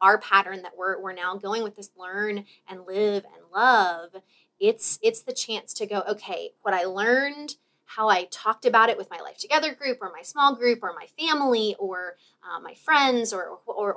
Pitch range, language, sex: 185-235 Hz, English, female